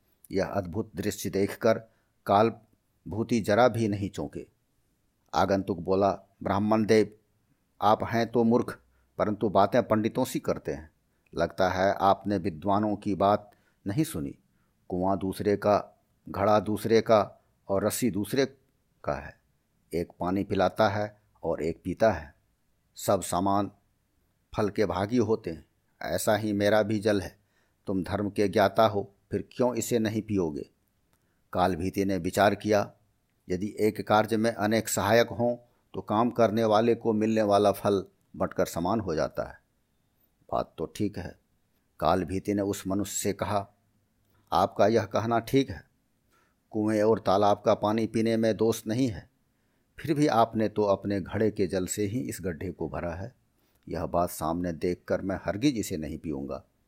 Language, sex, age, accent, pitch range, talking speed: Hindi, male, 50-69, native, 95-110 Hz, 155 wpm